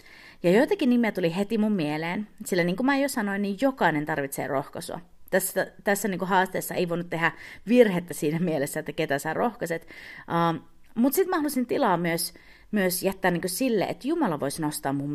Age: 30-49